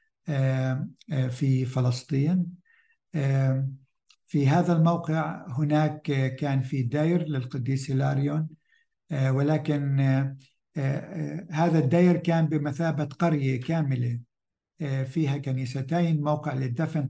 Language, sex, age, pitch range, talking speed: English, male, 60-79, 135-160 Hz, 75 wpm